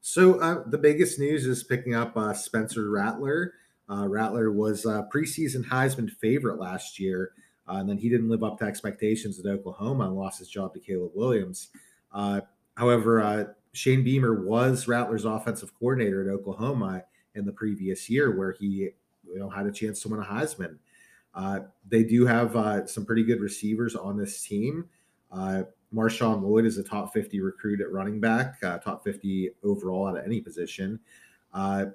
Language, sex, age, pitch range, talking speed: English, male, 30-49, 100-120 Hz, 180 wpm